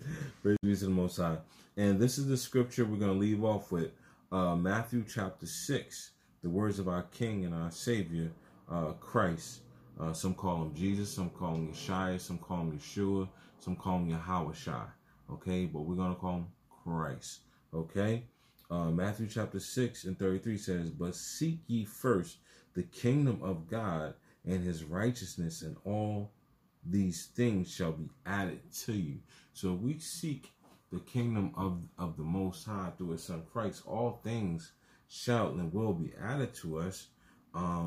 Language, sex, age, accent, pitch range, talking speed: English, male, 30-49, American, 85-105 Hz, 170 wpm